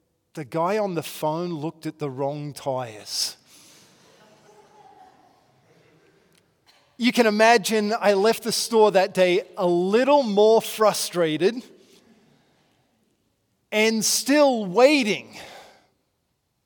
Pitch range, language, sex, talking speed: 165-260 Hz, English, male, 95 wpm